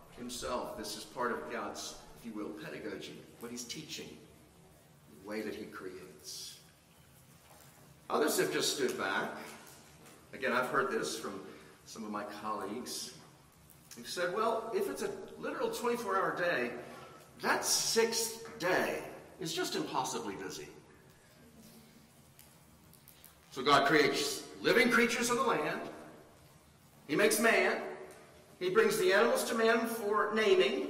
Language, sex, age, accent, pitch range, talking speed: English, male, 50-69, American, 75-90 Hz, 130 wpm